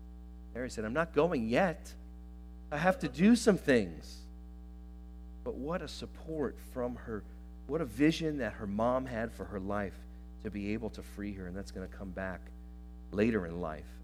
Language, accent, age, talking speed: English, American, 40-59, 185 wpm